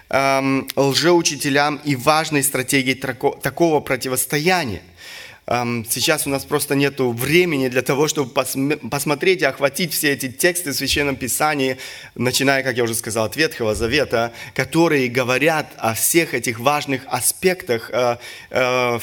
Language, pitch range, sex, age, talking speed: Russian, 130-160 Hz, male, 20-39, 140 wpm